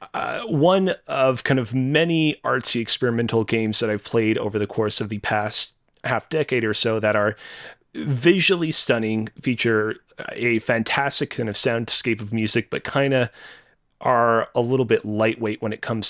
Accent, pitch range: American, 110-130 Hz